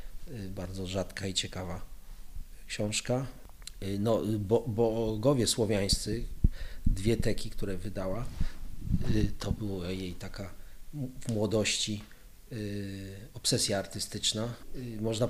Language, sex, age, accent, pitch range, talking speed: Polish, male, 40-59, native, 100-115 Hz, 85 wpm